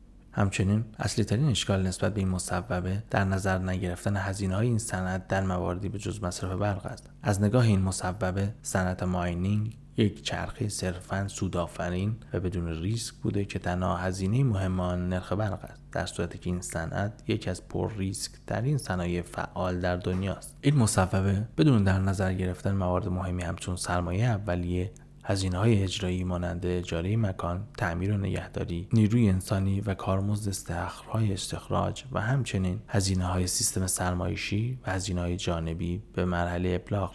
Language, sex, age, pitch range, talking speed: Persian, male, 20-39, 90-105 Hz, 155 wpm